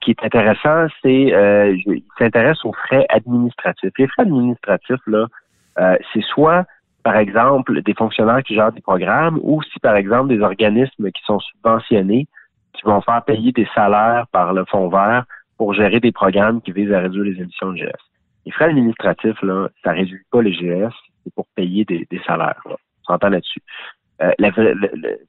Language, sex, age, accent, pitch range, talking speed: French, male, 40-59, French, 100-120 Hz, 190 wpm